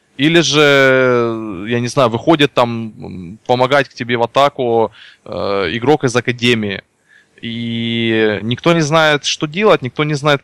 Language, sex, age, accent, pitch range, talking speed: Russian, male, 20-39, native, 110-145 Hz, 145 wpm